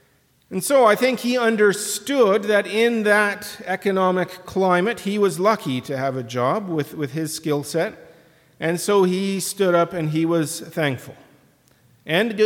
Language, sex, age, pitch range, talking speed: English, male, 40-59, 135-195 Hz, 160 wpm